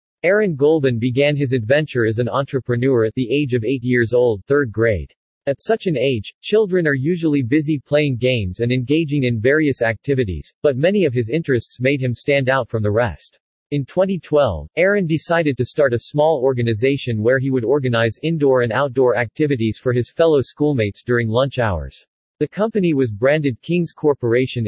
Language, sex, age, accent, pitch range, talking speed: English, male, 40-59, American, 120-150 Hz, 180 wpm